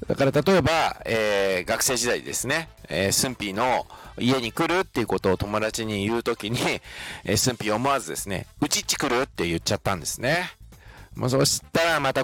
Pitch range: 100-130 Hz